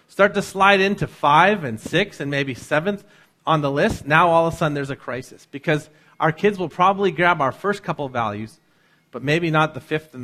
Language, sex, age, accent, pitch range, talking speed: English, male, 40-59, American, 130-175 Hz, 225 wpm